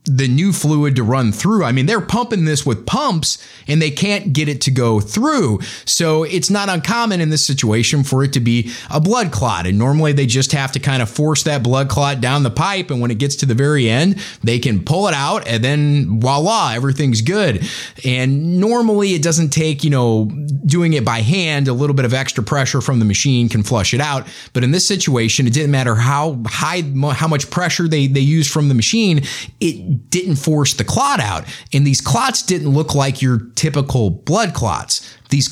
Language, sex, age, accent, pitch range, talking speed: English, male, 30-49, American, 115-155 Hz, 215 wpm